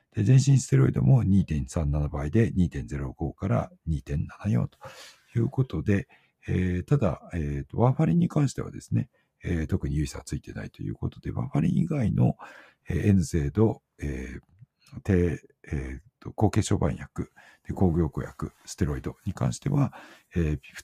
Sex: male